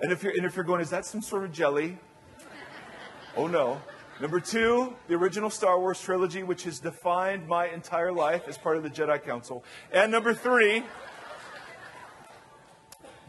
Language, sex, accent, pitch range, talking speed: English, female, American, 165-220 Hz, 165 wpm